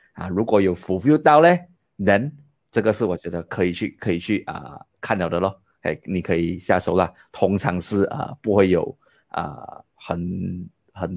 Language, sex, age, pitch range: Chinese, male, 30-49, 95-125 Hz